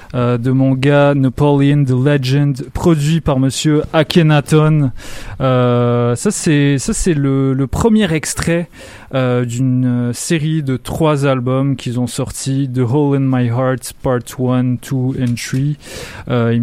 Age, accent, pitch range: 20-39, French, 125-145 Hz